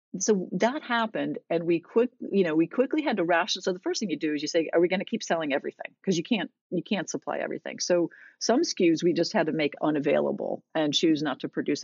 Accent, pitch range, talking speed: American, 155-215 Hz, 255 wpm